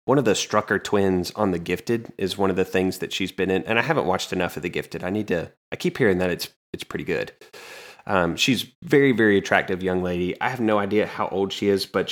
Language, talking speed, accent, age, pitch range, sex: English, 255 wpm, American, 30-49, 90-105 Hz, male